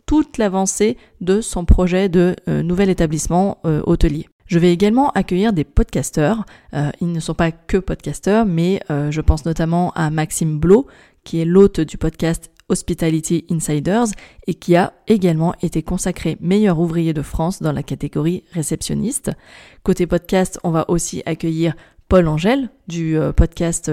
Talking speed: 160 wpm